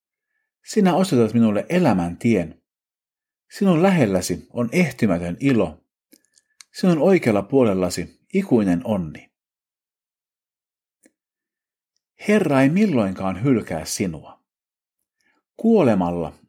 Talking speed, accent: 75 wpm, native